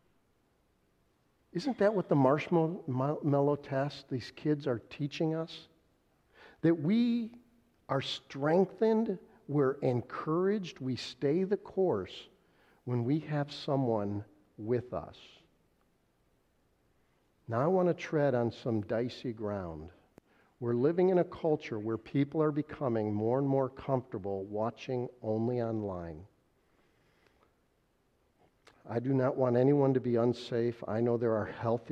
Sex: male